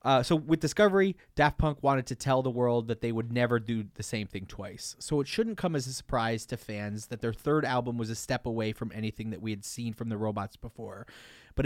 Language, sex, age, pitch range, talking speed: English, male, 30-49, 110-130 Hz, 245 wpm